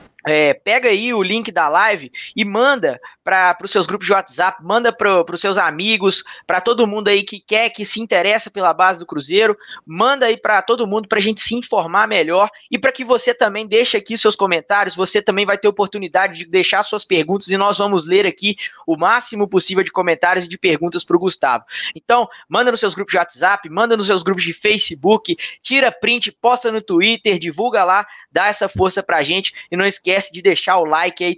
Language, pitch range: Portuguese, 185-225 Hz